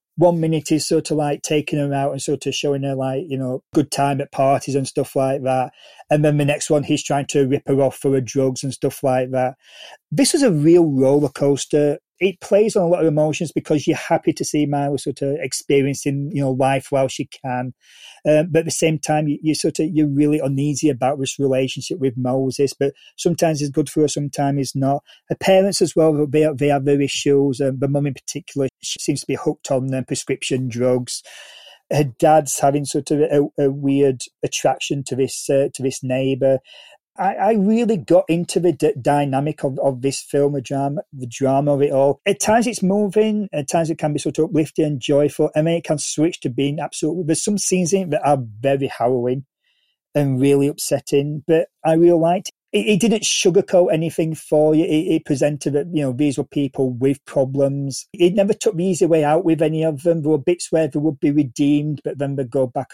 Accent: British